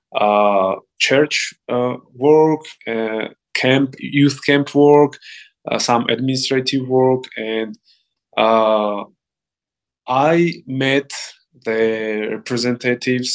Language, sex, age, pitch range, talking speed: English, male, 20-39, 115-140 Hz, 85 wpm